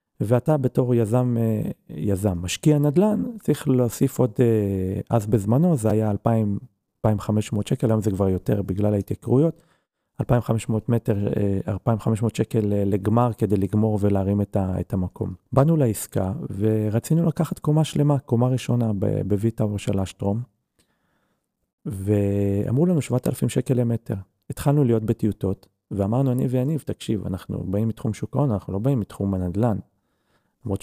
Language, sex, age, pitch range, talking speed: Hebrew, male, 40-59, 100-125 Hz, 125 wpm